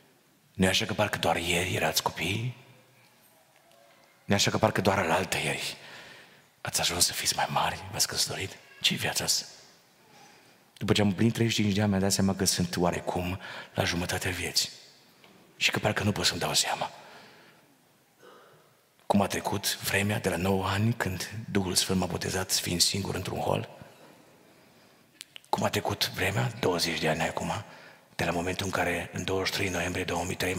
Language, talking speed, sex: Romanian, 165 wpm, male